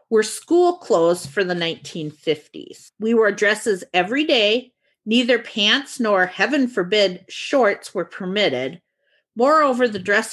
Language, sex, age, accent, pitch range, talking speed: English, female, 40-59, American, 185-265 Hz, 130 wpm